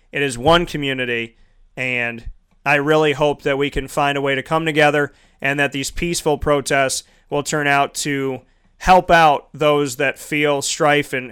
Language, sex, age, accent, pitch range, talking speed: English, male, 30-49, American, 130-155 Hz, 175 wpm